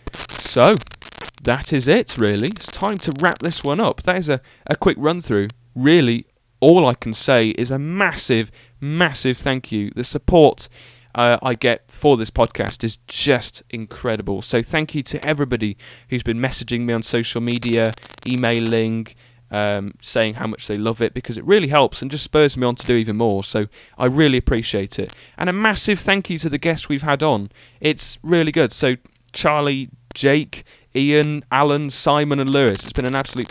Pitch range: 115-145 Hz